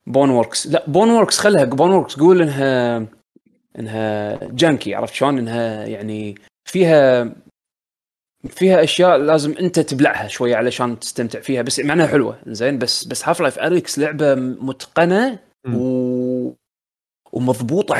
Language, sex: Arabic, male